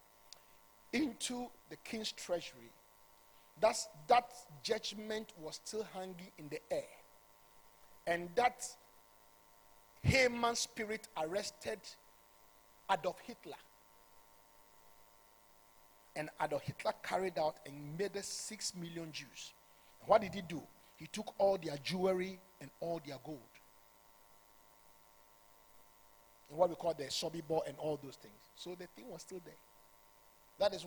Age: 50-69